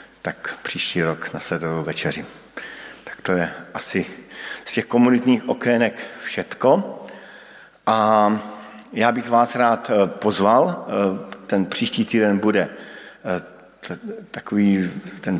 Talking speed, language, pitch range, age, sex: 110 wpm, Slovak, 95-110 Hz, 50-69, male